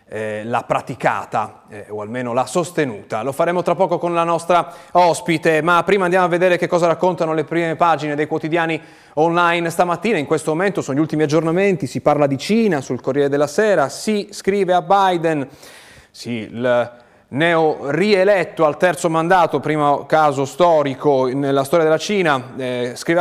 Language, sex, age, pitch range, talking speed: Italian, male, 30-49, 130-165 Hz, 170 wpm